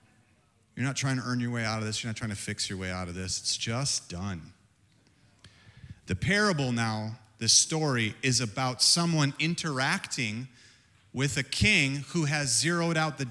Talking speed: 180 wpm